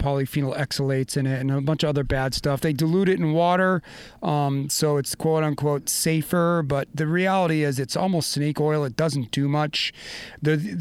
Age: 40-59